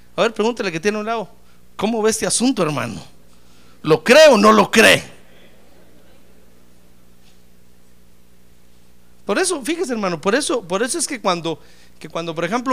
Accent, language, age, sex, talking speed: Mexican, Spanish, 50-69, male, 155 wpm